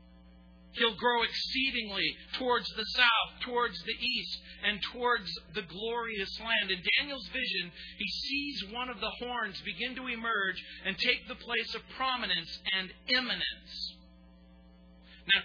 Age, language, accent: 40-59, English, American